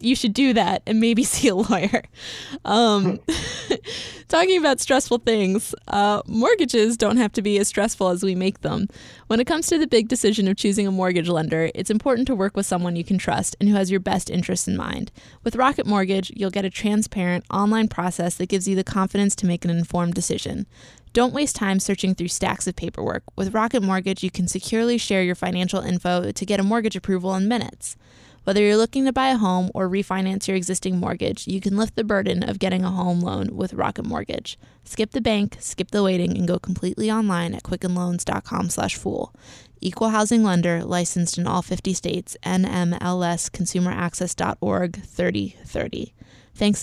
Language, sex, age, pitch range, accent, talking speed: English, female, 20-39, 180-220 Hz, American, 190 wpm